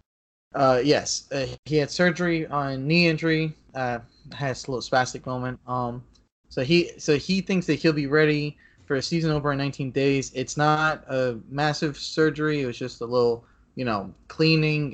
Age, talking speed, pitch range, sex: 20-39, 180 wpm, 120-145 Hz, male